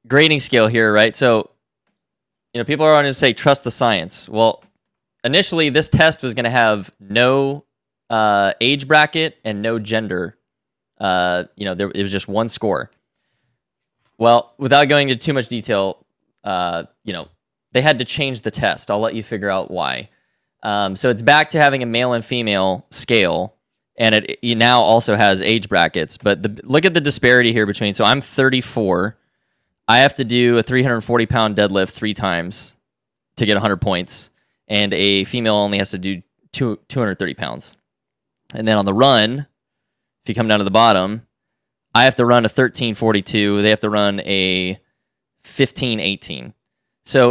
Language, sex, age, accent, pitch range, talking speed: English, male, 10-29, American, 105-130 Hz, 180 wpm